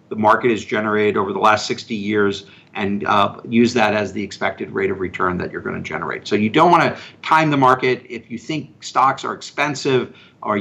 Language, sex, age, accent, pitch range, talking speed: English, male, 50-69, American, 115-135 Hz, 220 wpm